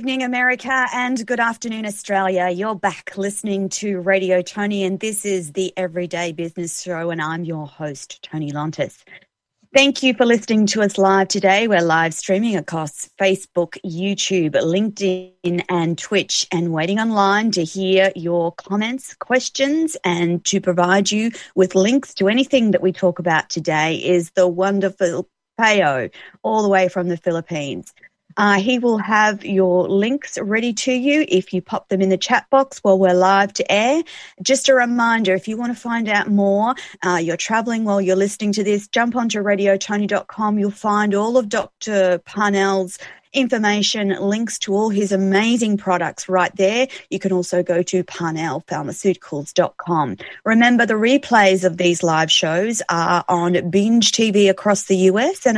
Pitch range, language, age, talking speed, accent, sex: 180-220 Hz, English, 30-49, 165 wpm, Australian, female